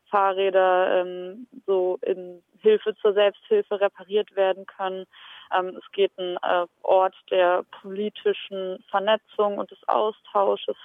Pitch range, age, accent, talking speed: 185-210 Hz, 20-39, German, 120 wpm